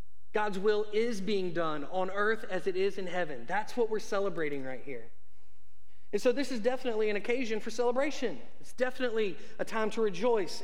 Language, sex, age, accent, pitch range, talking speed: English, male, 30-49, American, 155-215 Hz, 185 wpm